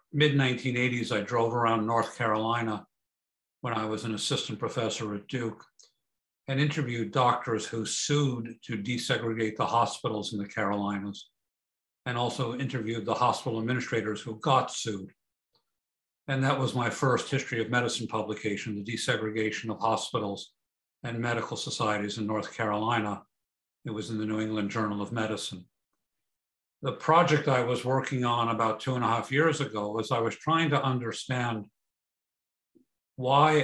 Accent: American